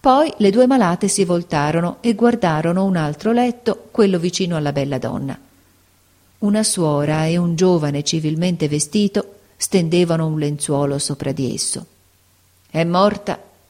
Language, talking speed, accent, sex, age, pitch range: Italian, 135 wpm, native, female, 40-59, 150-200 Hz